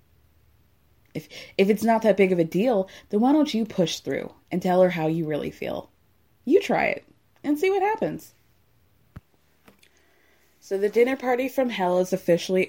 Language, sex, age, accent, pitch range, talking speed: English, female, 20-39, American, 175-250 Hz, 175 wpm